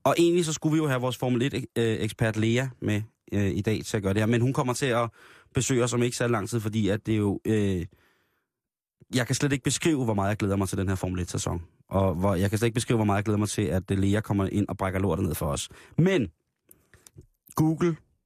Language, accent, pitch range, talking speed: Danish, native, 100-130 Hz, 255 wpm